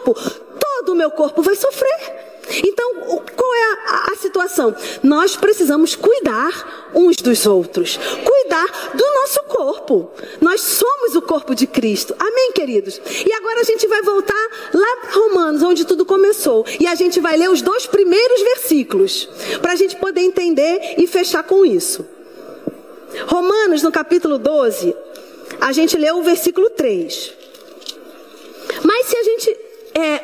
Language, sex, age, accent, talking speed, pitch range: Portuguese, female, 40-59, Brazilian, 145 wpm, 325-435 Hz